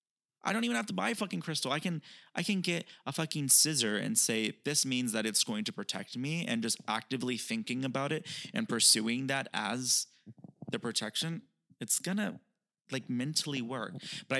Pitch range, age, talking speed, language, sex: 115-165 Hz, 20-39, 185 wpm, English, male